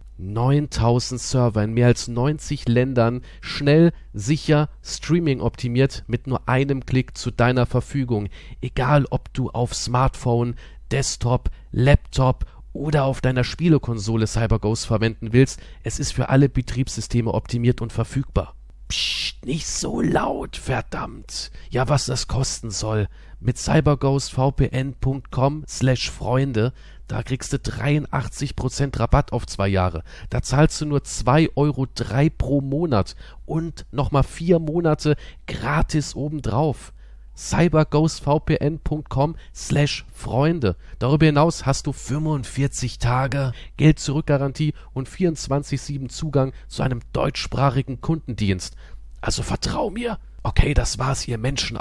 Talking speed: 120 wpm